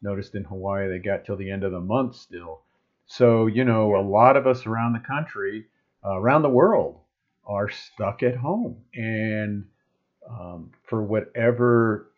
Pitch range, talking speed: 110-155 Hz, 170 wpm